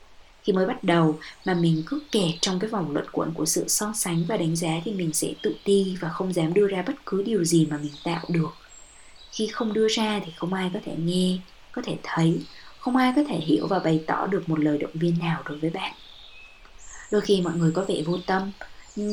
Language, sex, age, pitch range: Vietnamese, female, 20-39, 160-200 Hz